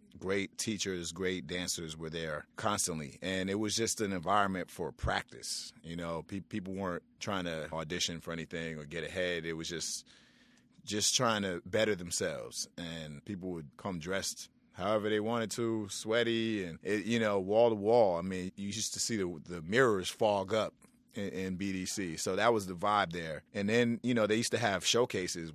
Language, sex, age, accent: English, male, 30-49, American